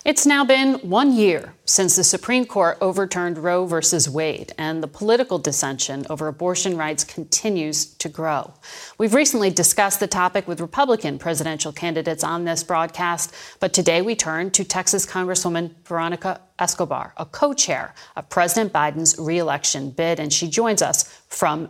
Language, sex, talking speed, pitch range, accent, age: English, female, 155 wpm, 170-215 Hz, American, 40-59